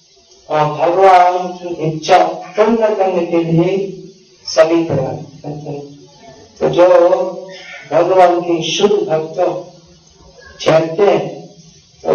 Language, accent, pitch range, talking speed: Hindi, native, 160-185 Hz, 100 wpm